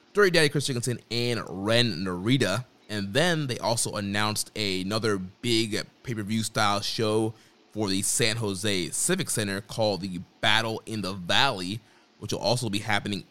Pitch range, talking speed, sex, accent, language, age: 95-115 Hz, 155 wpm, male, American, English, 20-39